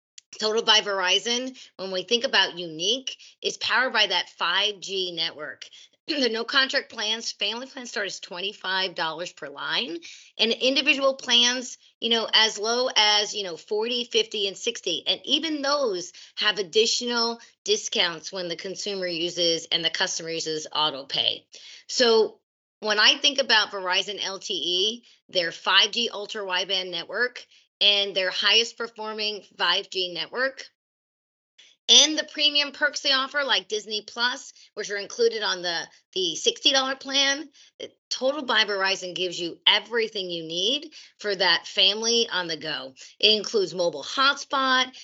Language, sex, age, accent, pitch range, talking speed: English, female, 30-49, American, 190-265 Hz, 145 wpm